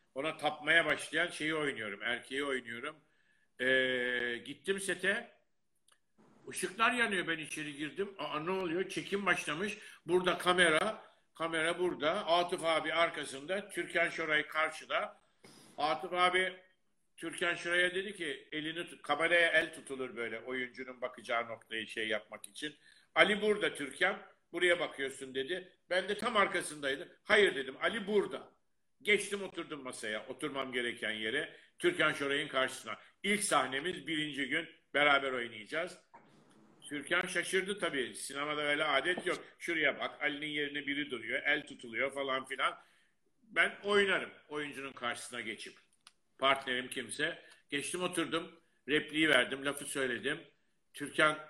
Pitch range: 135-175 Hz